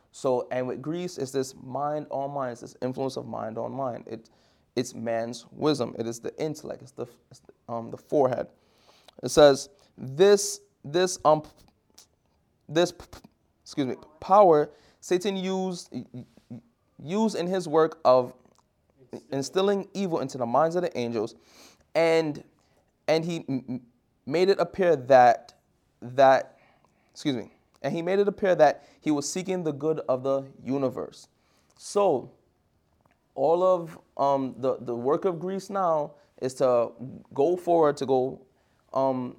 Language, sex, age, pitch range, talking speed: English, male, 20-39, 125-170 Hz, 150 wpm